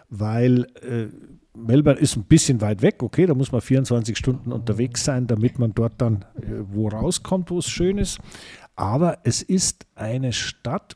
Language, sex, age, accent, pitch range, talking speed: German, male, 50-69, German, 110-155 Hz, 175 wpm